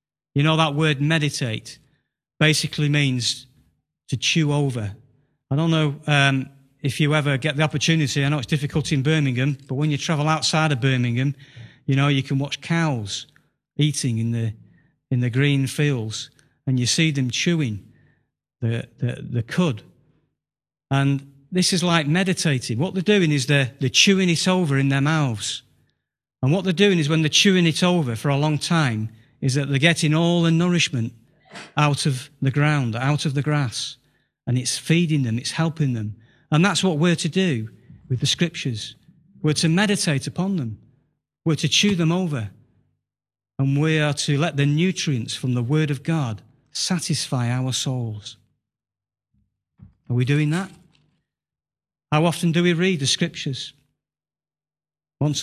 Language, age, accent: English, 40-59, British